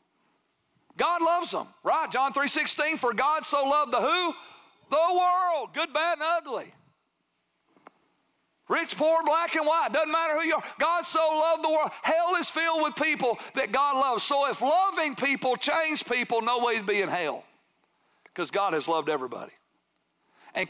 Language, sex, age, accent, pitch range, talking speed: English, male, 50-69, American, 235-310 Hz, 175 wpm